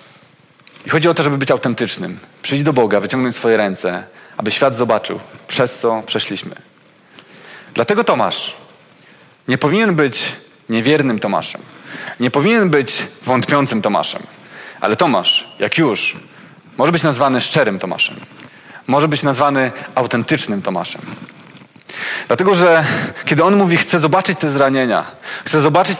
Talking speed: 130 wpm